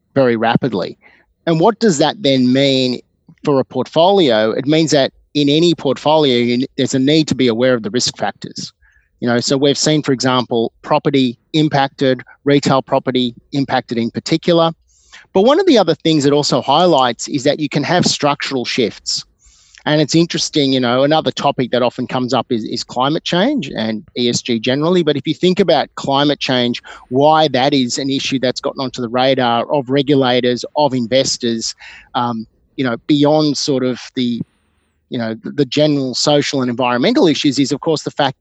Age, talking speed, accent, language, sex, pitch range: 30-49, 185 wpm, Australian, English, male, 125-150 Hz